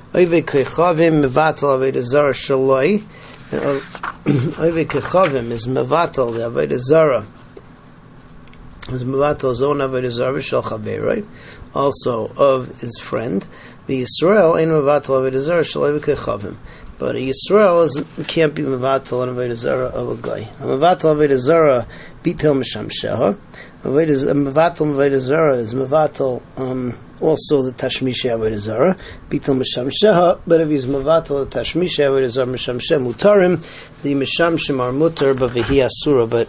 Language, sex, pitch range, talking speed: English, male, 130-155 Hz, 105 wpm